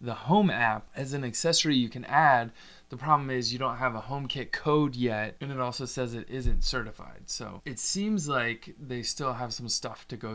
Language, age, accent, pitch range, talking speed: English, 20-39, American, 105-130 Hz, 215 wpm